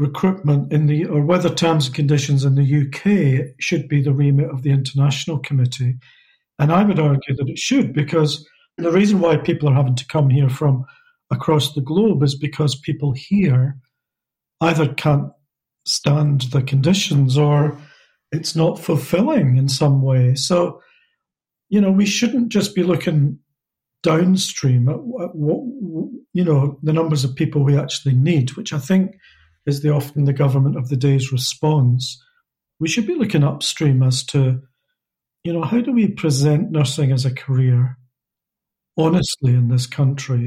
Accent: British